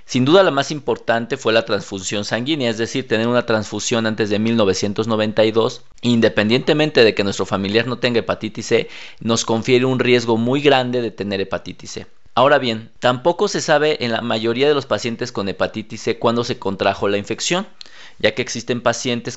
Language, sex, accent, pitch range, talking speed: Spanish, male, Mexican, 110-125 Hz, 185 wpm